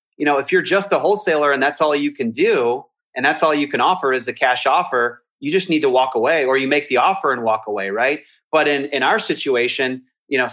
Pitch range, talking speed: 130-180 Hz, 255 wpm